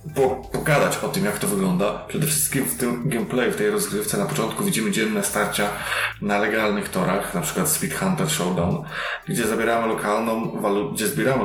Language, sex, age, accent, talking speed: Polish, male, 20-39, native, 170 wpm